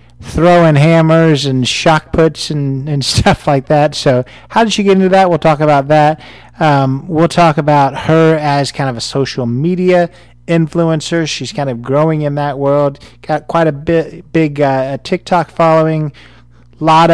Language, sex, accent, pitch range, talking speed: English, male, American, 135-165 Hz, 175 wpm